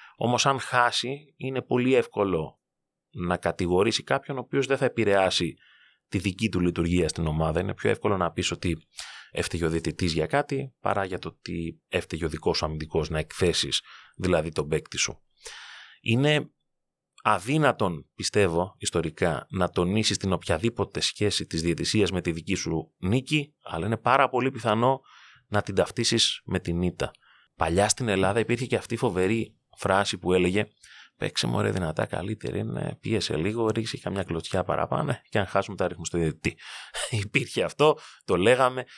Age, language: 30-49, Greek